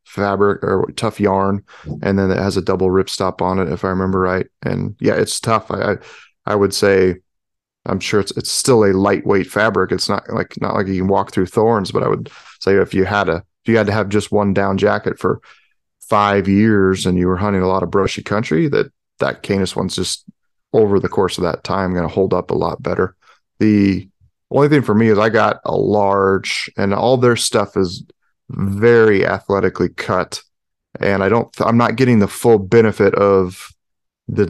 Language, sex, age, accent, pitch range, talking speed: English, male, 30-49, American, 95-105 Hz, 210 wpm